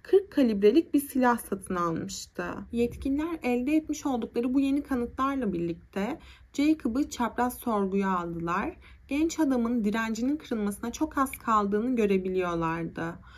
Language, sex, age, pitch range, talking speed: Turkish, female, 30-49, 205-290 Hz, 115 wpm